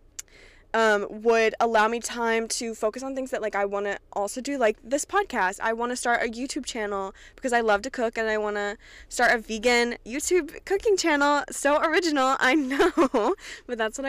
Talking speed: 205 wpm